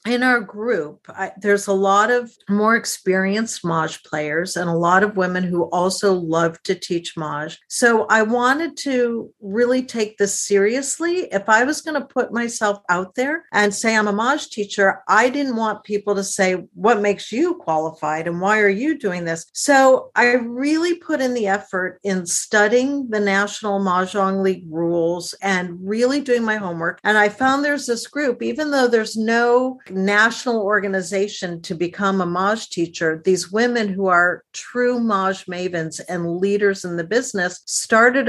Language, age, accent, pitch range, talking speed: English, 50-69, American, 180-235 Hz, 170 wpm